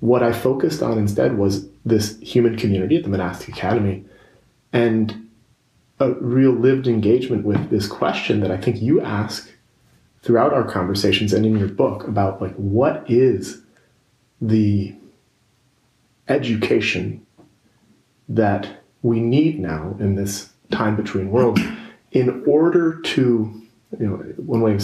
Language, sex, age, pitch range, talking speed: English, male, 30-49, 100-125 Hz, 135 wpm